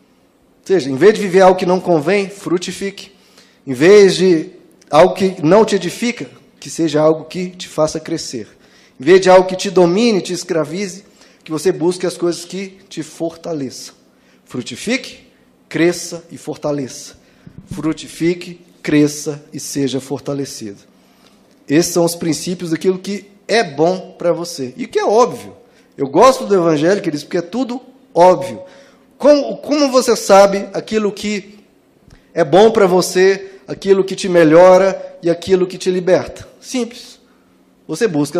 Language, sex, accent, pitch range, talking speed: Portuguese, male, Brazilian, 160-200 Hz, 150 wpm